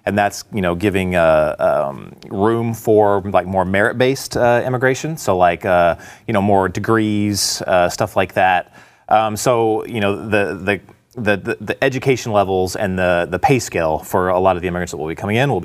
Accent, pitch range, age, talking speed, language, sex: American, 100-130 Hz, 30-49, 200 wpm, English, male